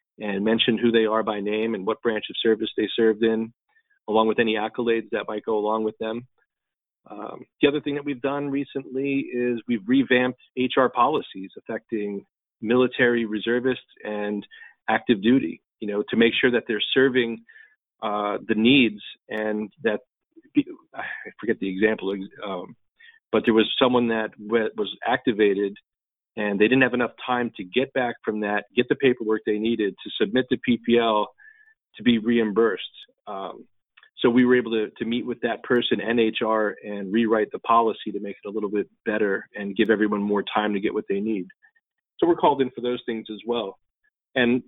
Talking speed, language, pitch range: 185 wpm, English, 110-130 Hz